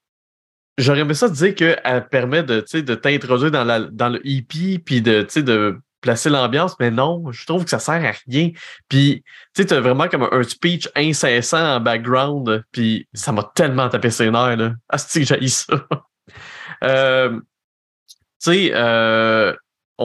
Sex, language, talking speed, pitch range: male, French, 170 wpm, 115-150 Hz